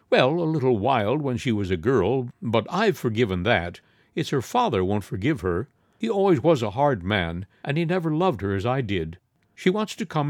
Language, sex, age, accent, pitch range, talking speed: English, male, 60-79, American, 100-145 Hz, 215 wpm